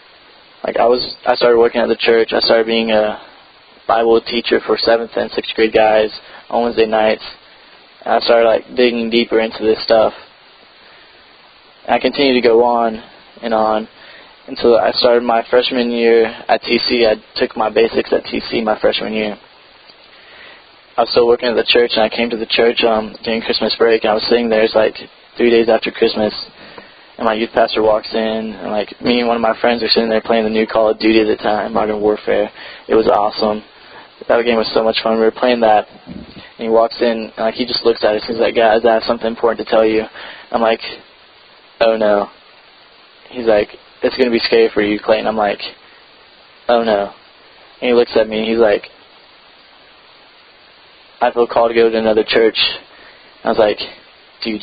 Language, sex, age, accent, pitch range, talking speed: English, male, 20-39, American, 110-120 Hz, 205 wpm